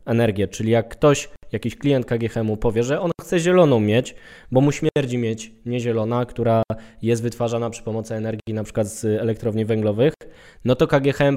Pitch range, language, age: 110-130 Hz, Polish, 20-39